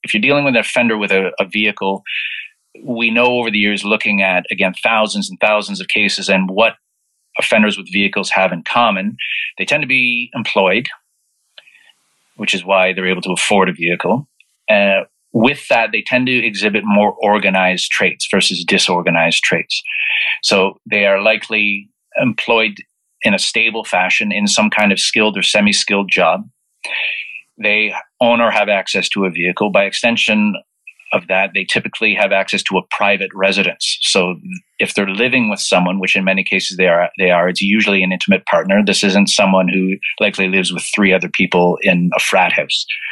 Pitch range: 95-105 Hz